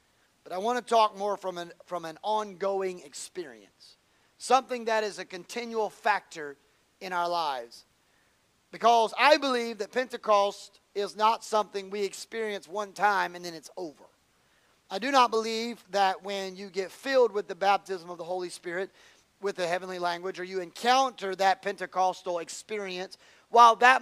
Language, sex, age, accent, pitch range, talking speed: English, male, 30-49, American, 185-220 Hz, 160 wpm